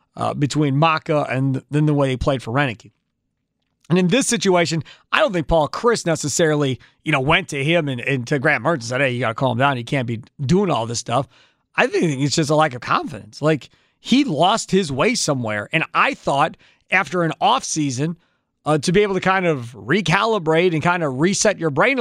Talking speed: 225 wpm